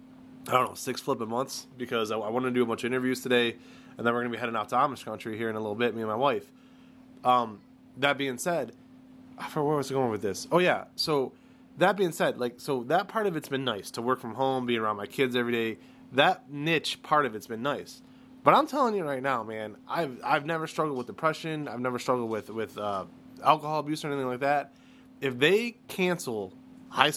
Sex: male